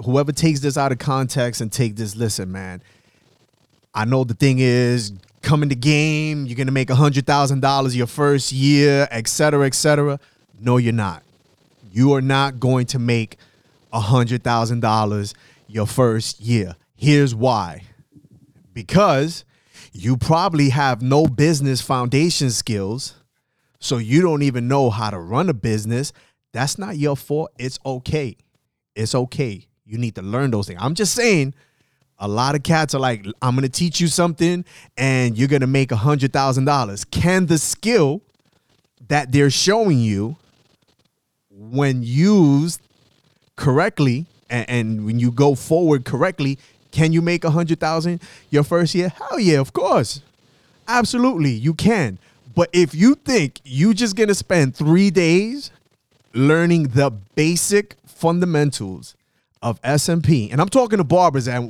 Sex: male